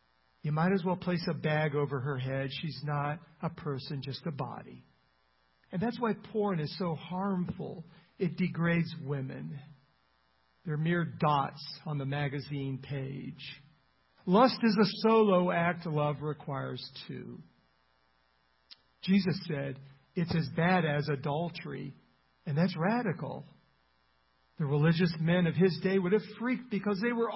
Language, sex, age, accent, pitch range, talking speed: English, male, 50-69, American, 140-185 Hz, 140 wpm